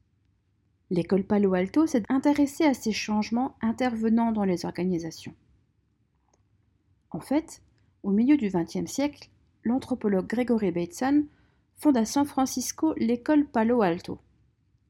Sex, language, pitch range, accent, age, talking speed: female, French, 190-275 Hz, French, 40-59, 115 wpm